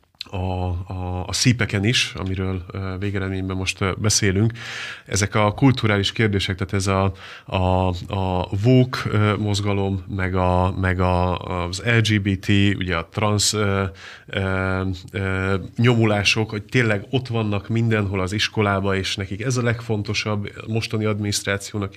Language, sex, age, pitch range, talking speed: Hungarian, male, 30-49, 100-115 Hz, 125 wpm